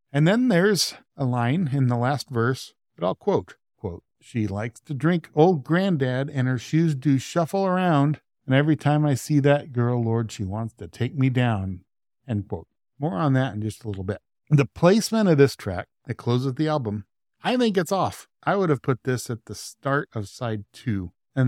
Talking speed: 205 wpm